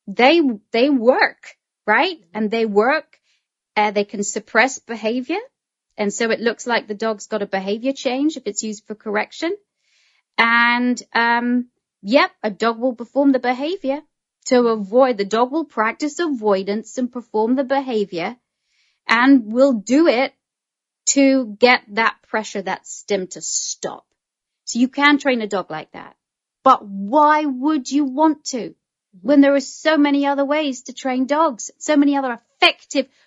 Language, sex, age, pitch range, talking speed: English, female, 30-49, 205-275 Hz, 160 wpm